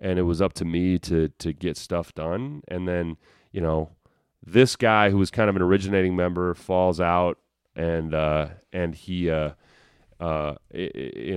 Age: 30-49